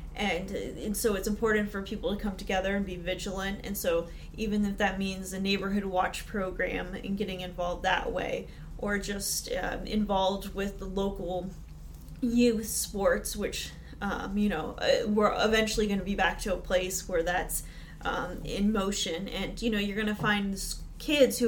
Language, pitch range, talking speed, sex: English, 180-210 Hz, 180 wpm, female